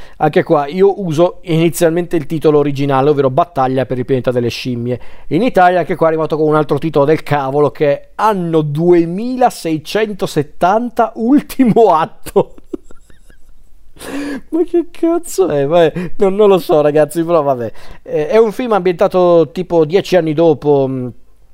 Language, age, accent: Italian, 40-59, native